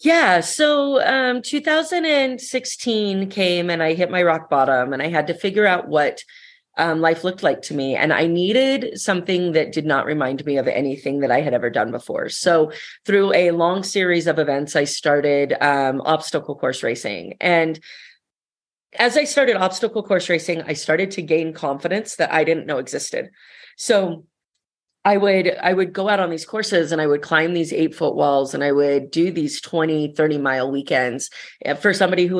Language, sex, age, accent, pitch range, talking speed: English, female, 30-49, American, 150-200 Hz, 185 wpm